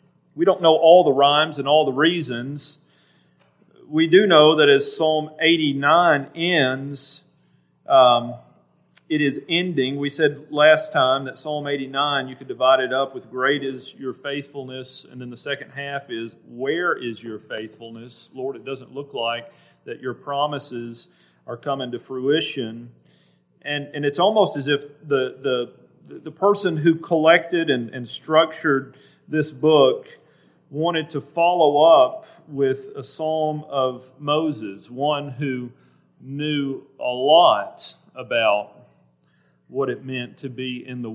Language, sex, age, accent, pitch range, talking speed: English, male, 40-59, American, 125-155 Hz, 145 wpm